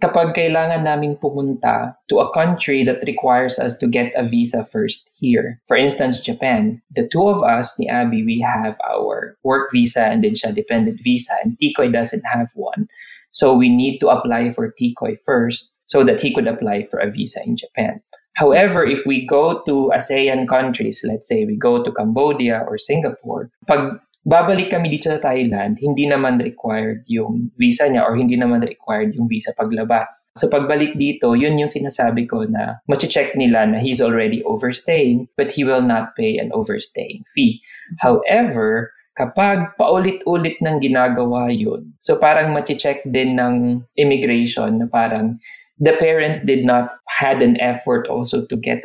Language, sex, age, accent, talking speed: English, male, 20-39, Filipino, 170 wpm